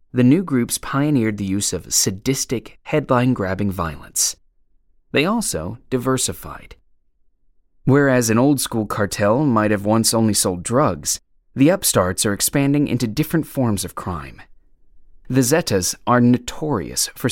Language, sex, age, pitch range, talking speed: English, male, 30-49, 95-130 Hz, 130 wpm